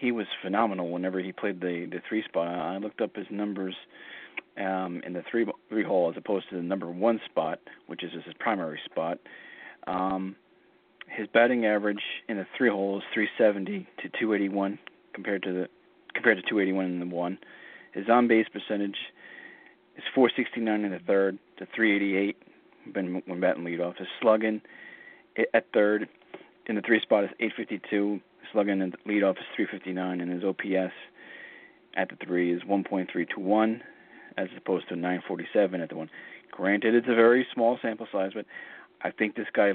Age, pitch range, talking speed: 40-59, 95-105 Hz, 180 wpm